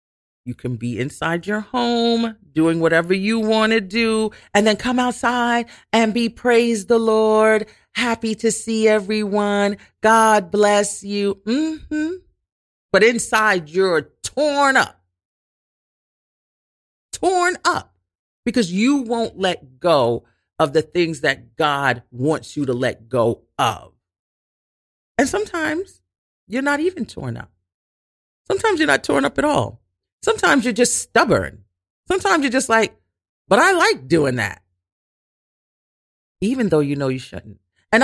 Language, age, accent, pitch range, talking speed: English, 40-59, American, 150-245 Hz, 135 wpm